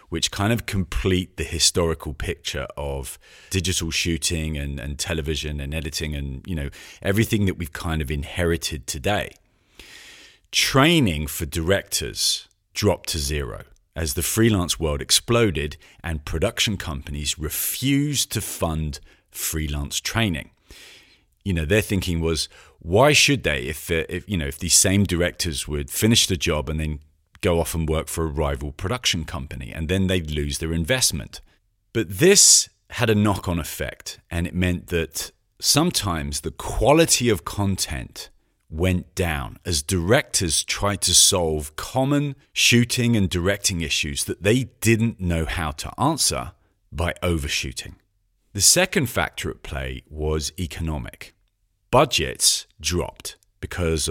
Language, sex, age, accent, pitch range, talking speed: English, male, 40-59, British, 75-100 Hz, 140 wpm